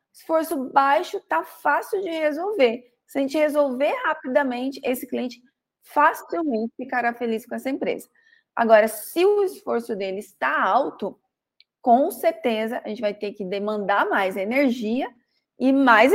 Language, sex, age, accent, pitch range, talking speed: Portuguese, female, 20-39, Brazilian, 225-290 Hz, 140 wpm